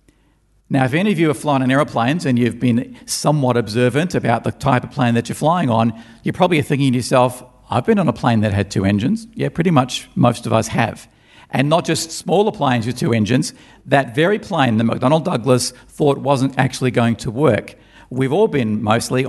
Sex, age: male, 50-69